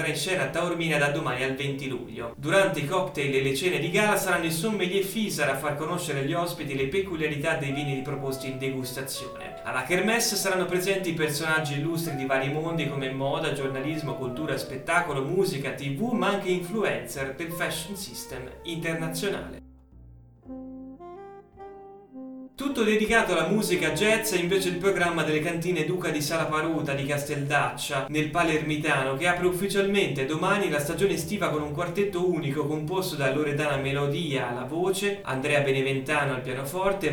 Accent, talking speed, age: native, 155 wpm, 30-49